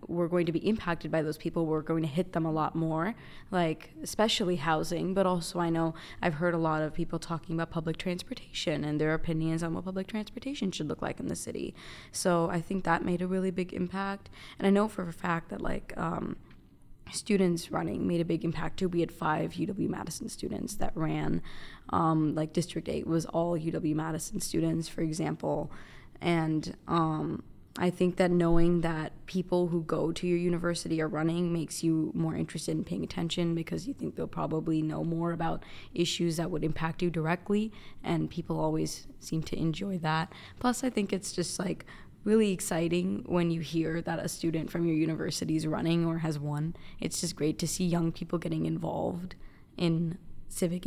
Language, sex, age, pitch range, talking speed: English, female, 20-39, 160-180 Hz, 195 wpm